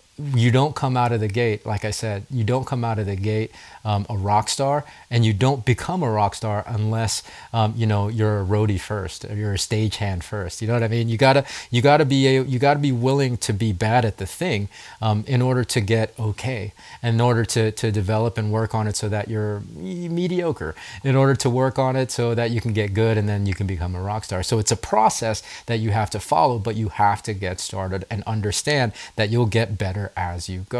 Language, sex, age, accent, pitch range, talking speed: English, male, 30-49, American, 105-125 Hz, 240 wpm